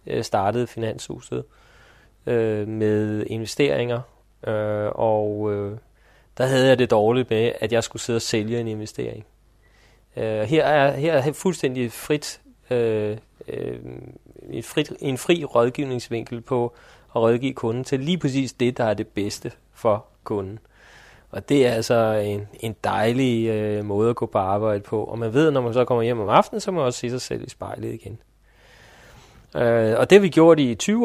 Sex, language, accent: male, Danish, native